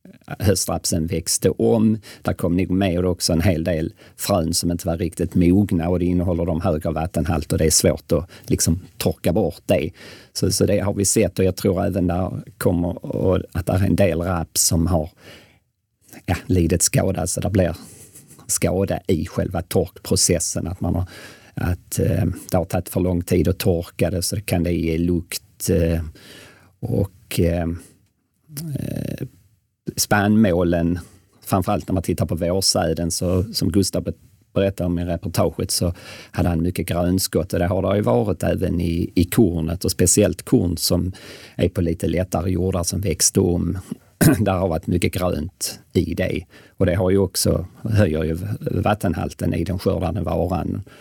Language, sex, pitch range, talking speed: Swedish, male, 85-100 Hz, 170 wpm